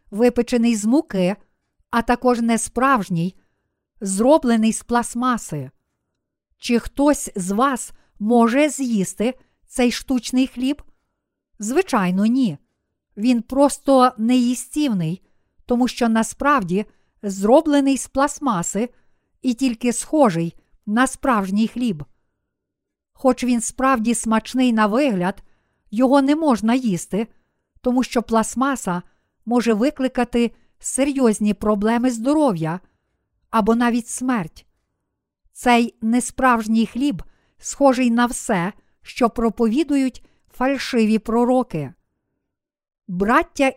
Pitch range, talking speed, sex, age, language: 210-260 Hz, 90 wpm, female, 50-69, Ukrainian